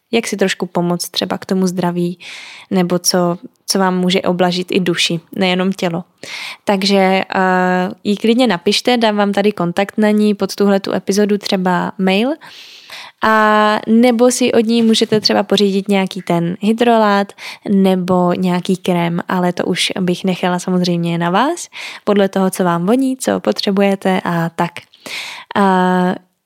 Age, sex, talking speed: 10-29, female, 150 wpm